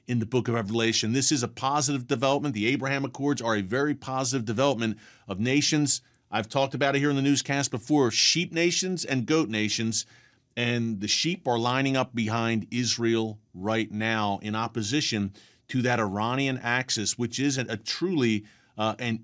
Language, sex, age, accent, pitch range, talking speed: English, male, 40-59, American, 115-145 Hz, 175 wpm